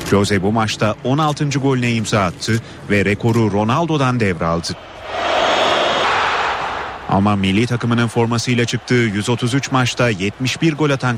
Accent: native